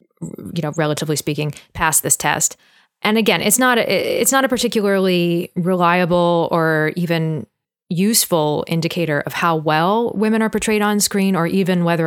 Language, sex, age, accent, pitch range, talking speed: English, female, 20-39, American, 165-205 Hz, 160 wpm